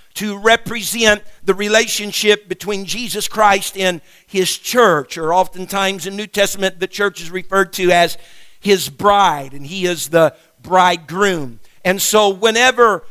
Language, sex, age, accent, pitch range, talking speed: English, male, 50-69, American, 195-245 Hz, 140 wpm